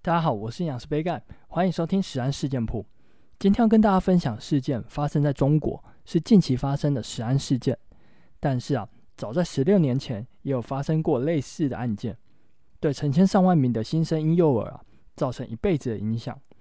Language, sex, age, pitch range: Chinese, male, 20-39, 120-160 Hz